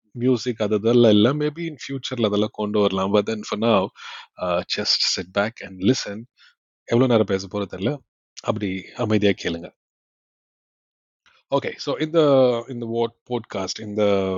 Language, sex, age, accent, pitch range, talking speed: Tamil, male, 30-49, native, 100-125 Hz, 120 wpm